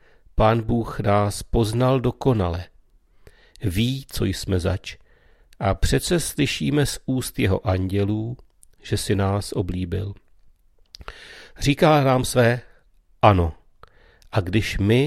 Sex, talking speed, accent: male, 110 wpm, native